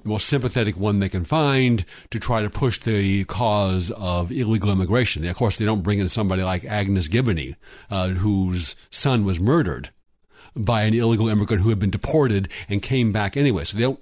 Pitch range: 105-135 Hz